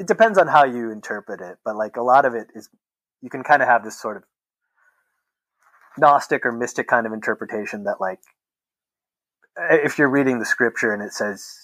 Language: English